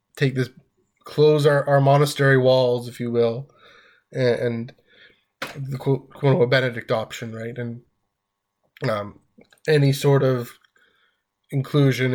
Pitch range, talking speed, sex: 115-135 Hz, 120 wpm, male